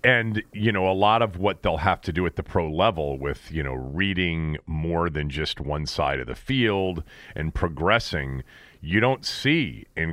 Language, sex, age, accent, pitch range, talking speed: English, male, 40-59, American, 80-110 Hz, 195 wpm